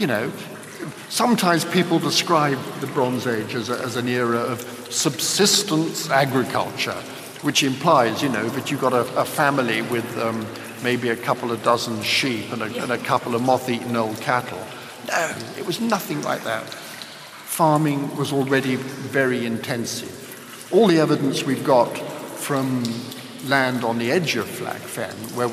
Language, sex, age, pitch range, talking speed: English, male, 60-79, 120-145 Hz, 155 wpm